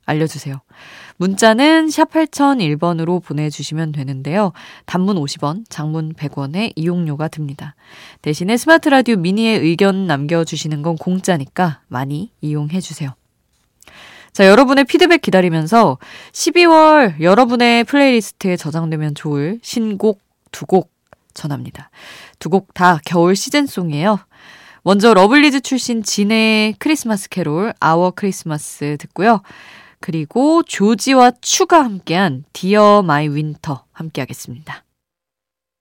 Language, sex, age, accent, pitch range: Korean, female, 20-39, native, 155-230 Hz